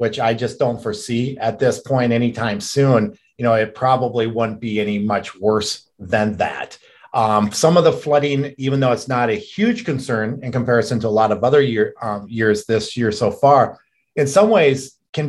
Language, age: English, 40-59